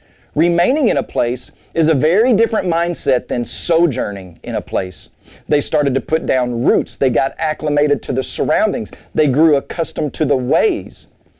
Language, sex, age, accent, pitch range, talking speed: English, male, 40-59, American, 115-165 Hz, 170 wpm